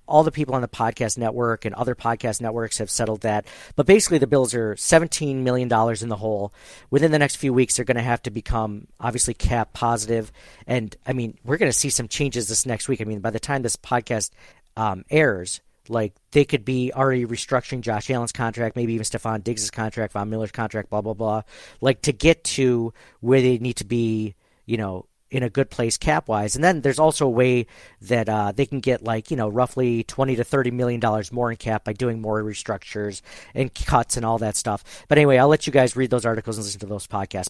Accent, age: American, 40-59